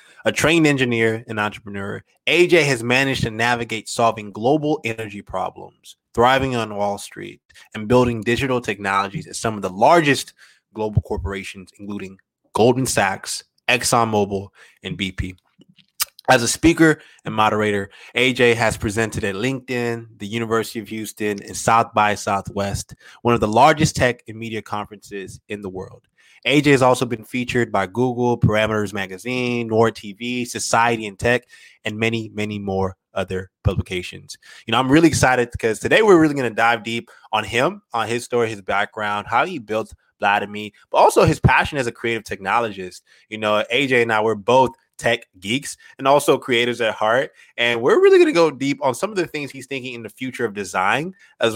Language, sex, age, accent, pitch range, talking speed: English, male, 20-39, American, 105-125 Hz, 175 wpm